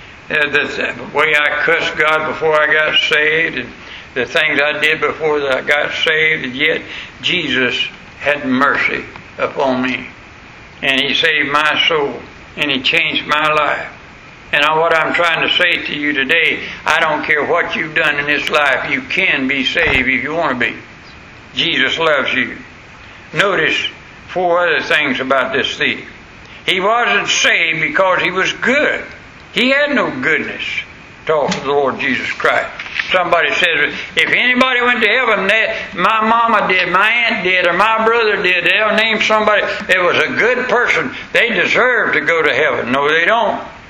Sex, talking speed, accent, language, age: male, 175 wpm, American, English, 60-79